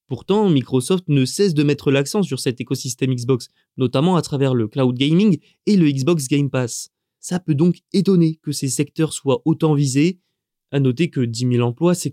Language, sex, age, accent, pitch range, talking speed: French, male, 20-39, French, 135-165 Hz, 195 wpm